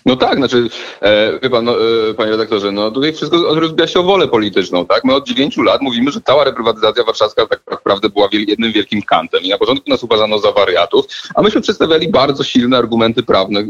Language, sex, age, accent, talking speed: Polish, male, 30-49, native, 205 wpm